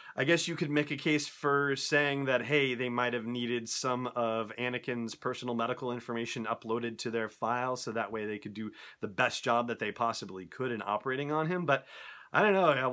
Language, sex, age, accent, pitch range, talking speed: English, male, 30-49, American, 115-145 Hz, 220 wpm